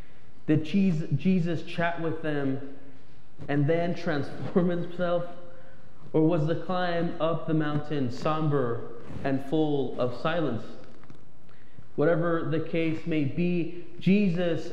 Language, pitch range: English, 140-175 Hz